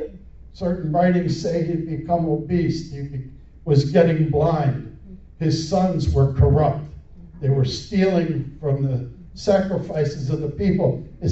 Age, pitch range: 60-79, 140-180 Hz